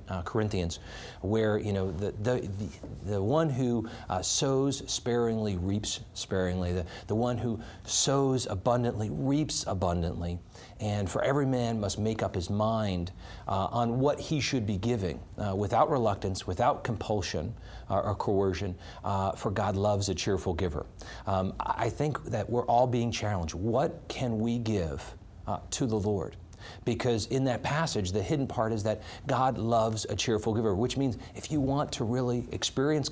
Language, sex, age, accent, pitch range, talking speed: English, male, 40-59, American, 95-120 Hz, 165 wpm